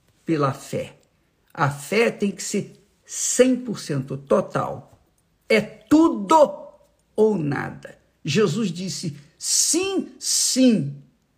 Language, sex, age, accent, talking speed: Portuguese, male, 50-69, Brazilian, 90 wpm